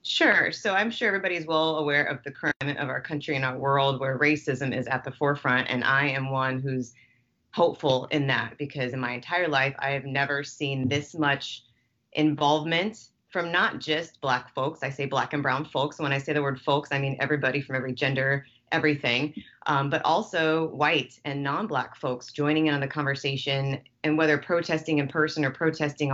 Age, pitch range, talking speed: 30-49, 135-155 Hz, 195 wpm